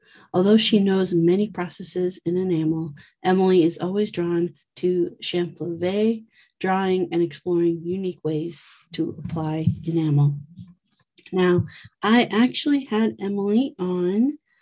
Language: English